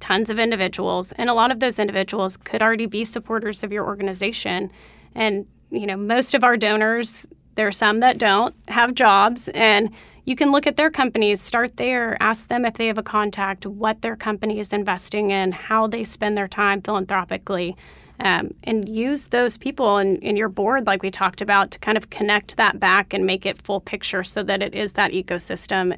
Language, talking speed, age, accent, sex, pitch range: English, 205 wpm, 30-49, American, female, 195-230 Hz